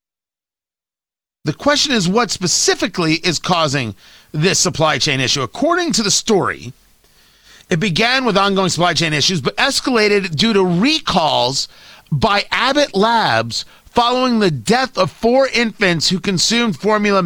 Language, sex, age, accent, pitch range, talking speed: English, male, 40-59, American, 160-230 Hz, 135 wpm